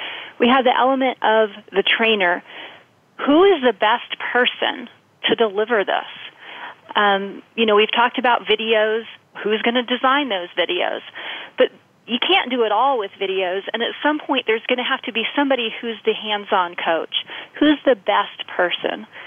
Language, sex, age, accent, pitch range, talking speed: English, female, 30-49, American, 195-245 Hz, 170 wpm